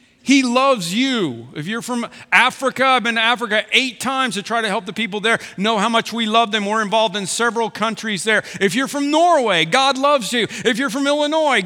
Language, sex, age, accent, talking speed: English, male, 40-59, American, 220 wpm